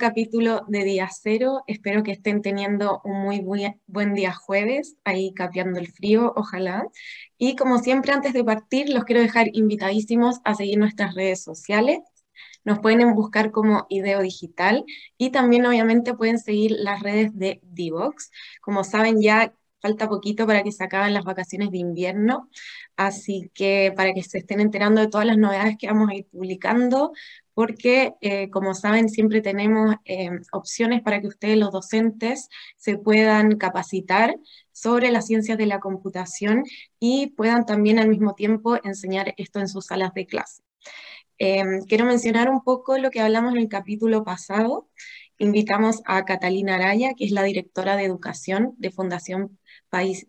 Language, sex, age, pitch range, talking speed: Spanish, female, 20-39, 195-230 Hz, 165 wpm